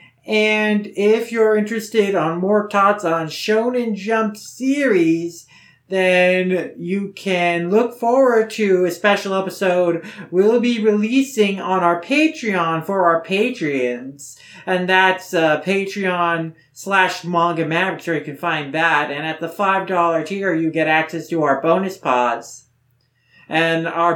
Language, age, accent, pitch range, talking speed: English, 40-59, American, 160-195 Hz, 135 wpm